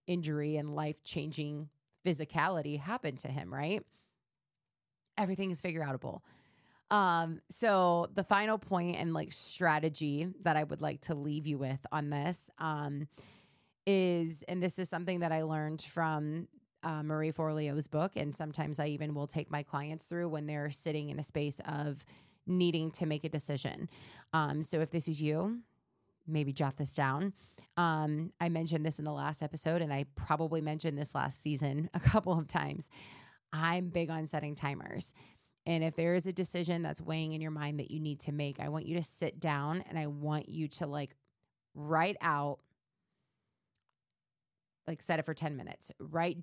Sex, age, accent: female, 30-49, American